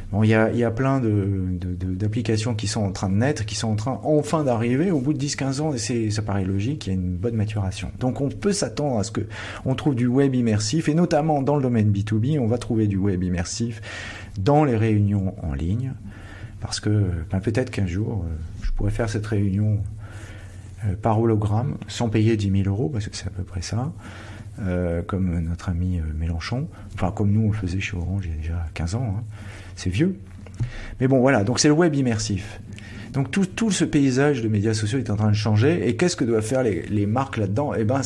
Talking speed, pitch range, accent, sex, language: 230 wpm, 100-120 Hz, French, male, French